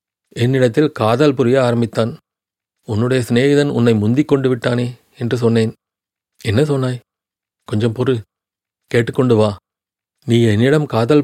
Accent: native